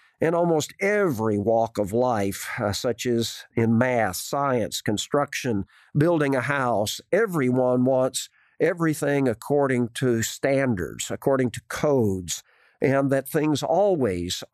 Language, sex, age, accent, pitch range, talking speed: English, male, 50-69, American, 110-135 Hz, 120 wpm